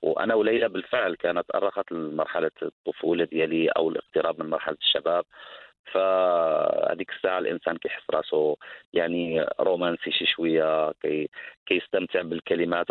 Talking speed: 105 wpm